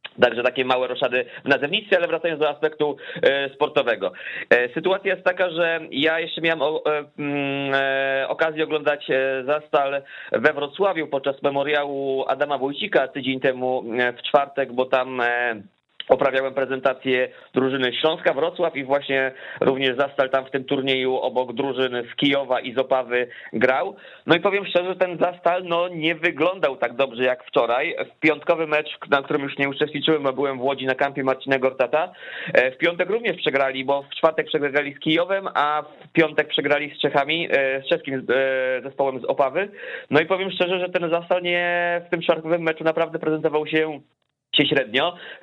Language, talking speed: Polish, 160 wpm